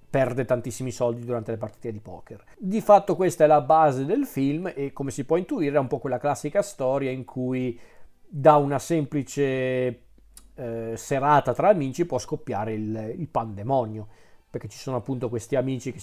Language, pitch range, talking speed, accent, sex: Italian, 120-145 Hz, 180 wpm, native, male